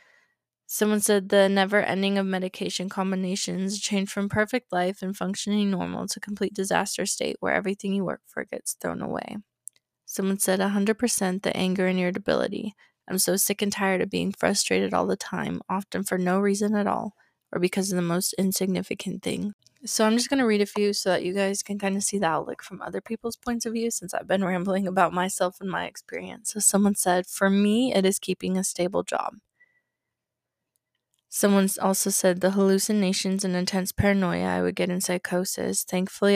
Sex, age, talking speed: female, 20-39, 190 wpm